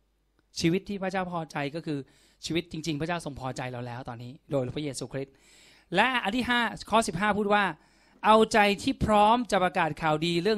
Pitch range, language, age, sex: 145-195 Hz, Thai, 20-39, male